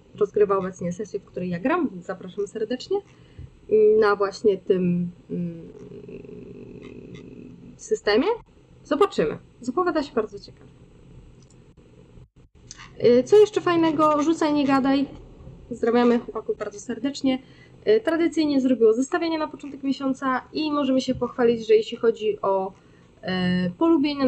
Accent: native